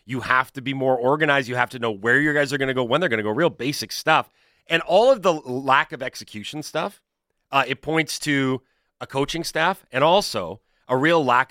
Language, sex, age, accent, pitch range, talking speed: English, male, 30-49, American, 110-150 Hz, 235 wpm